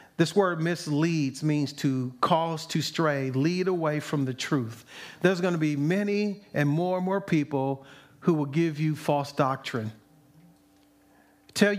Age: 40-59